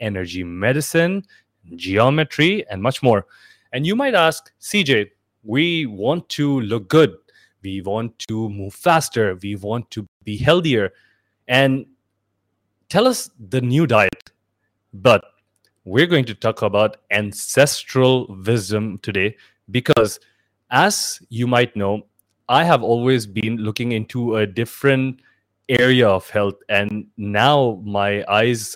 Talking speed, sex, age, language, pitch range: 125 wpm, male, 20-39, English, 100-125 Hz